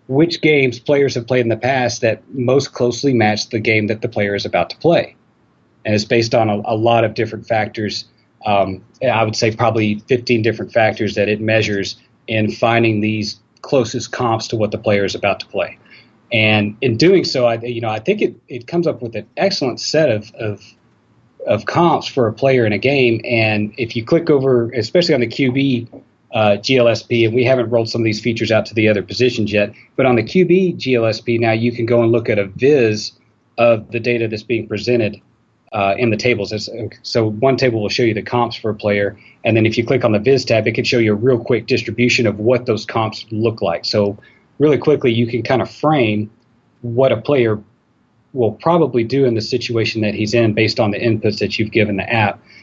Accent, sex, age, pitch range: American, male, 40-59, 110-125 Hz